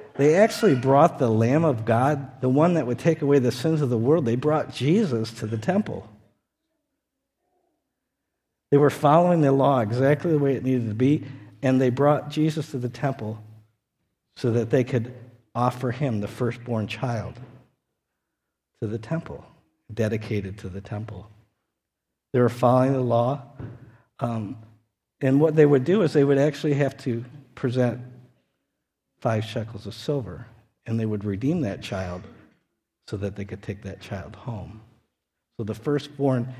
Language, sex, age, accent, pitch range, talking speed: English, male, 50-69, American, 110-140 Hz, 160 wpm